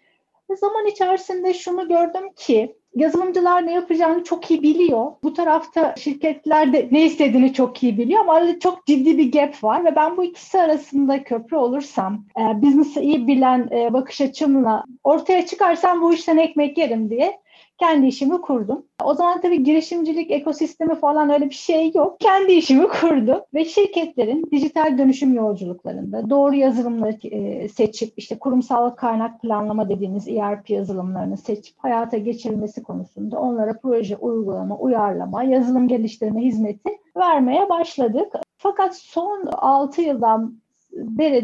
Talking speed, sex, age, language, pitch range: 140 wpm, female, 40-59, Turkish, 225-315 Hz